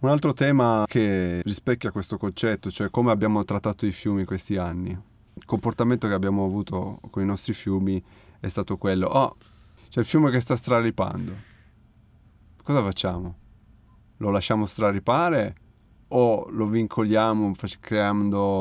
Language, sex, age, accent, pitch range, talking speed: Italian, male, 30-49, native, 95-110 Hz, 140 wpm